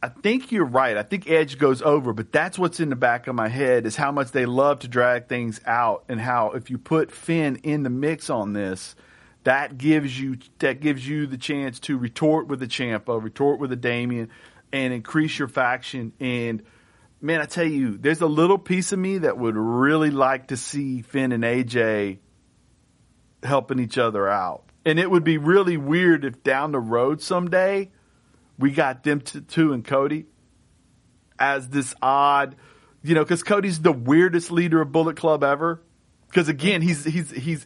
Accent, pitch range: American, 130-165 Hz